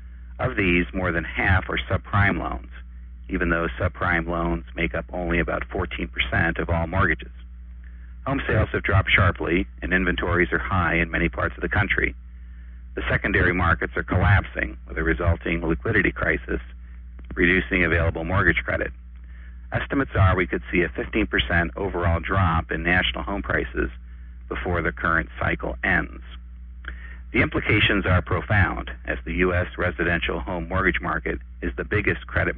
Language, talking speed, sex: English, 150 wpm, male